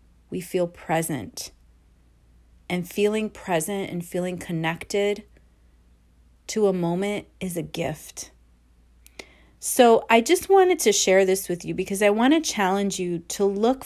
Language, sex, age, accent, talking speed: English, female, 30-49, American, 140 wpm